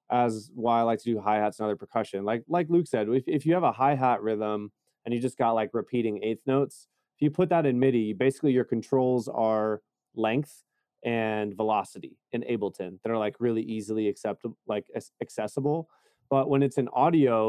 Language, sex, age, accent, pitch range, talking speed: English, male, 20-39, American, 110-135 Hz, 200 wpm